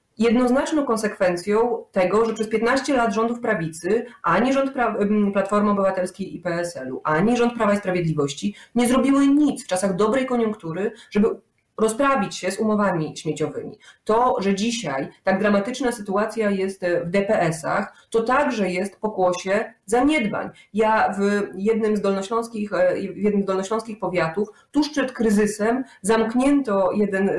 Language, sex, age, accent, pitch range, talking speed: Polish, female, 30-49, native, 190-235 Hz, 130 wpm